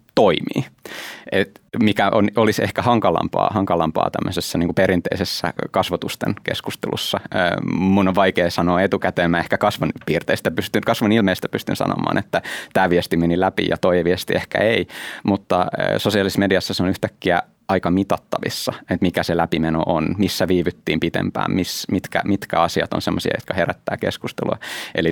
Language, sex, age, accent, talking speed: Finnish, male, 20-39, native, 150 wpm